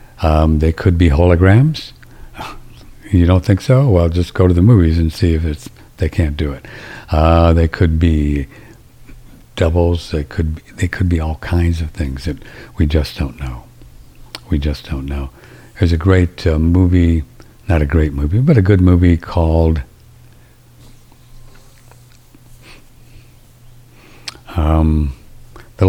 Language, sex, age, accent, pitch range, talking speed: English, male, 60-79, American, 80-120 Hz, 145 wpm